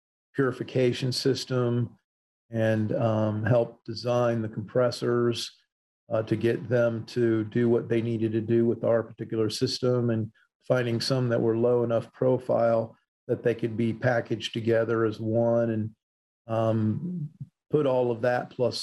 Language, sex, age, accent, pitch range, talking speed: English, male, 40-59, American, 110-125 Hz, 145 wpm